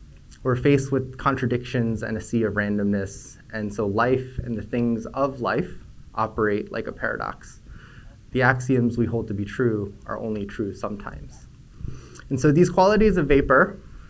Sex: male